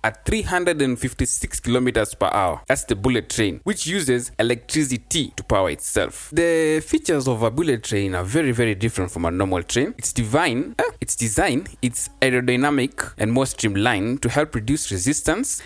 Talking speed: 165 wpm